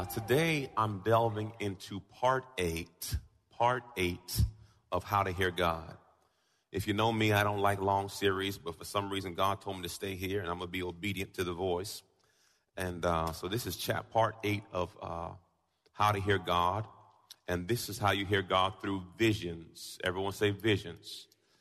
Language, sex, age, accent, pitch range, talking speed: English, male, 40-59, American, 90-110 Hz, 190 wpm